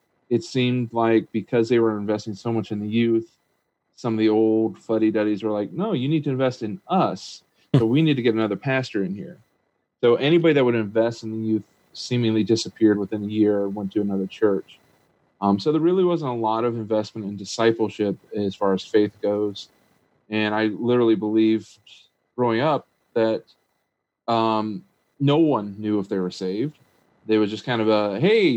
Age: 30-49